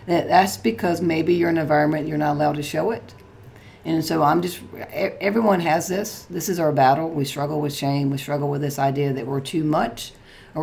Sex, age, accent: female, 40-59, American